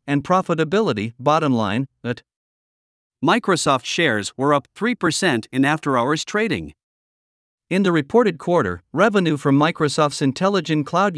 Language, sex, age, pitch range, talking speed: Vietnamese, male, 50-69, 130-170 Hz, 120 wpm